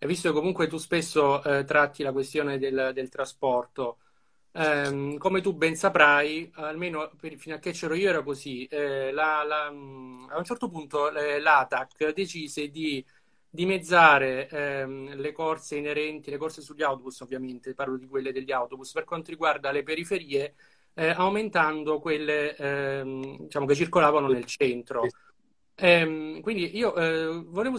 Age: 30-49